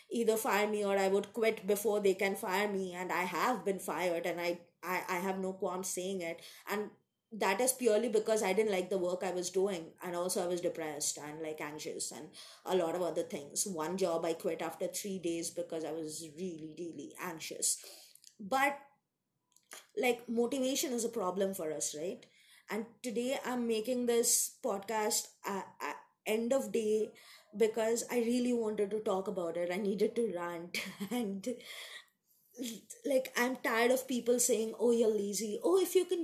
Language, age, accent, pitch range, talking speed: English, 20-39, Indian, 195-270 Hz, 185 wpm